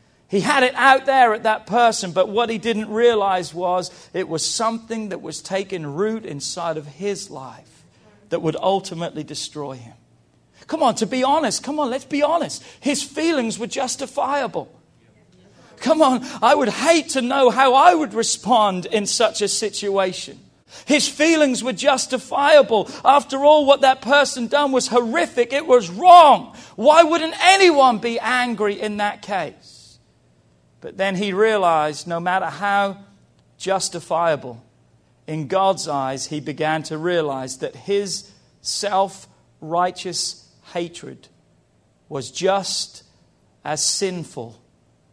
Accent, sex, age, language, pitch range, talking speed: British, male, 40-59, English, 155-250 Hz, 140 wpm